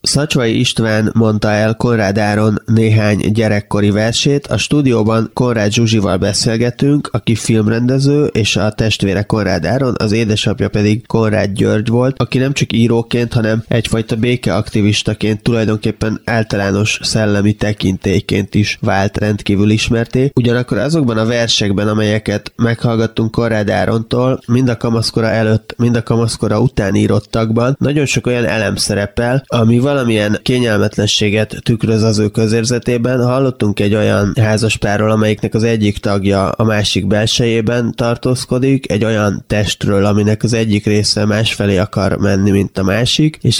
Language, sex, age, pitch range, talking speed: Hungarian, male, 20-39, 105-120 Hz, 130 wpm